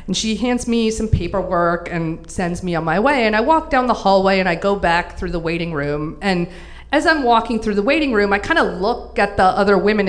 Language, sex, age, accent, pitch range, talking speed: English, female, 30-49, American, 185-255 Hz, 250 wpm